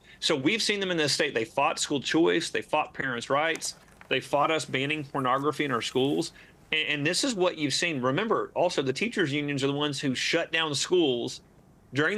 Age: 40-59